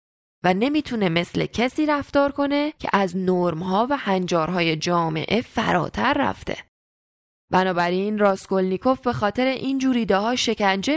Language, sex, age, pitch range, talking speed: Persian, female, 10-29, 185-235 Hz, 120 wpm